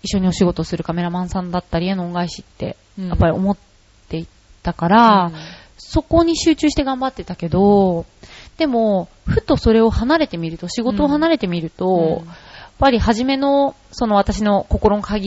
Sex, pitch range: female, 175-245 Hz